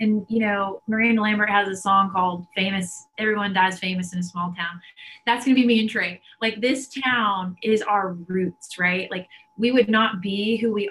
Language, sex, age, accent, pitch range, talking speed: English, female, 20-39, American, 185-230 Hz, 210 wpm